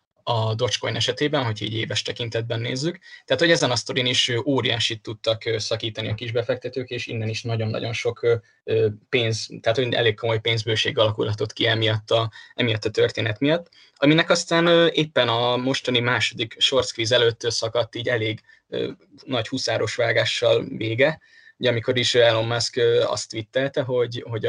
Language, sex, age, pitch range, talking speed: Hungarian, male, 20-39, 110-140 Hz, 150 wpm